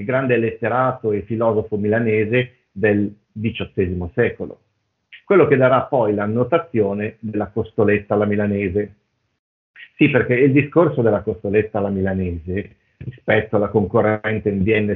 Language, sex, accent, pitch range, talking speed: Italian, male, native, 105-130 Hz, 125 wpm